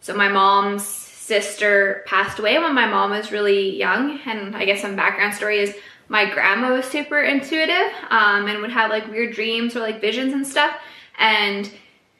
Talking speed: 180 wpm